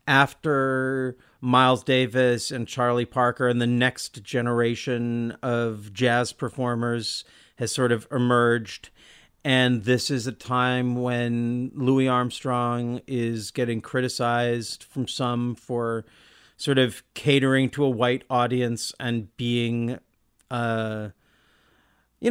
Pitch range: 120-150 Hz